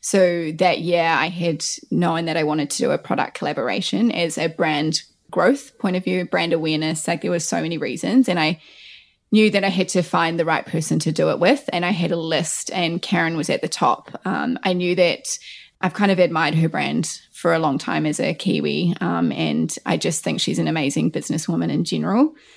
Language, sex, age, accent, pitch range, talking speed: English, female, 20-39, Australian, 165-195 Hz, 220 wpm